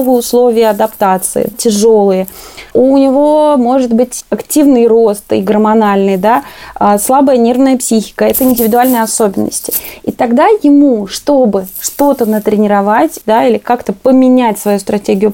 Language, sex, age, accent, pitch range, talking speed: Russian, female, 20-39, native, 215-265 Hz, 115 wpm